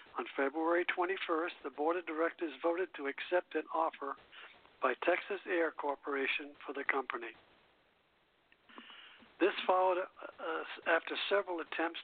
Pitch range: 145-185 Hz